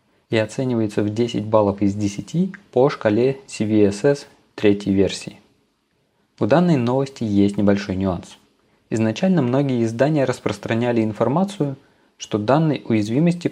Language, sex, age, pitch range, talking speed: Russian, male, 20-39, 105-140 Hz, 115 wpm